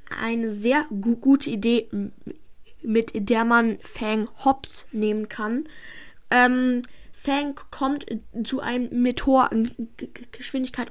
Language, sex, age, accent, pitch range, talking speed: German, female, 10-29, German, 220-260 Hz, 105 wpm